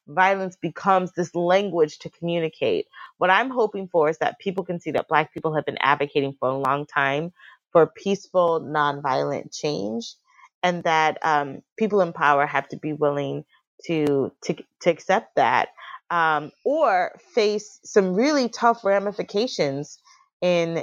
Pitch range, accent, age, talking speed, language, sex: 150-185 Hz, American, 20-39, 150 wpm, English, female